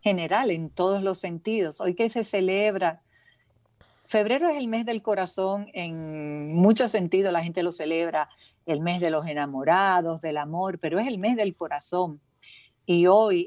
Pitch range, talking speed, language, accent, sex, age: 160-195 Hz, 170 wpm, Spanish, American, female, 50-69